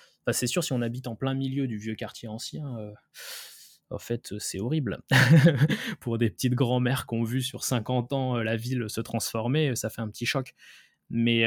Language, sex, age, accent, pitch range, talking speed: French, male, 20-39, French, 105-125 Hz, 205 wpm